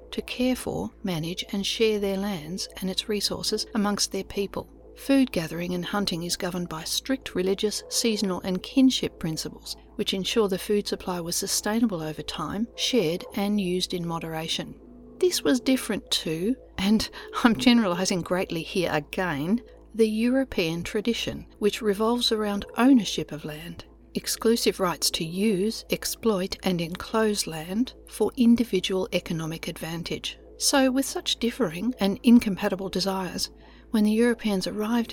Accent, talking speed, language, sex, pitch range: Australian, 140 wpm, English, female, 180-230 Hz